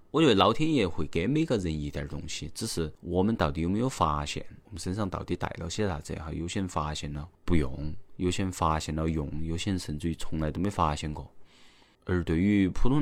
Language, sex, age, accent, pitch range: Chinese, male, 20-39, native, 75-90 Hz